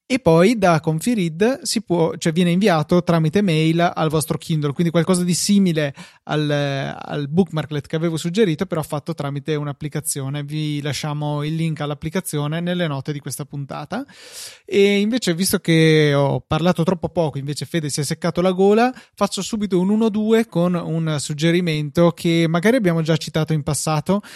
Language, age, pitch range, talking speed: Italian, 20-39, 150-185 Hz, 160 wpm